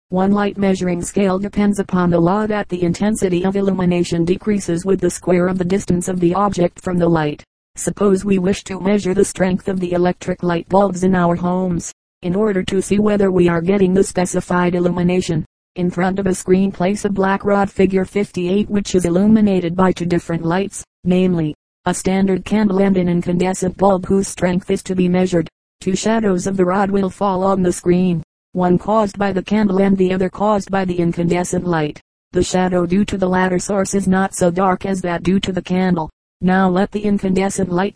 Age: 40-59